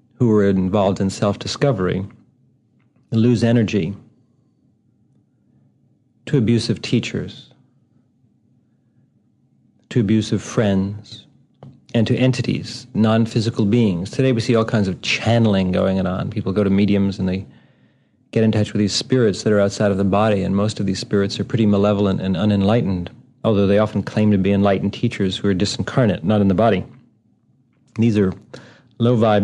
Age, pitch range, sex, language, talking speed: 40-59, 100-120 Hz, male, English, 150 wpm